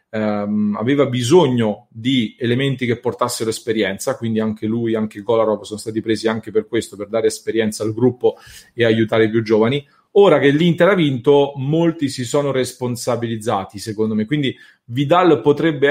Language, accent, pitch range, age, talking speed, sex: English, Italian, 115-145 Hz, 30-49, 160 wpm, male